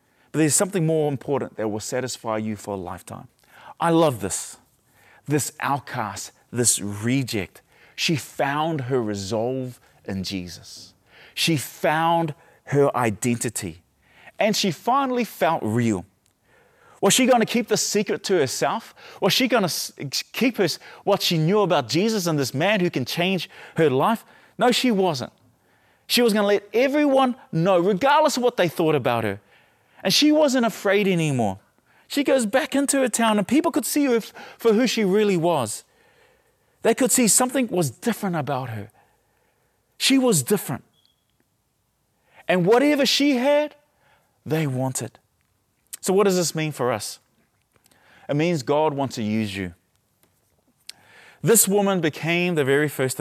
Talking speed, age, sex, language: 155 wpm, 30-49, male, English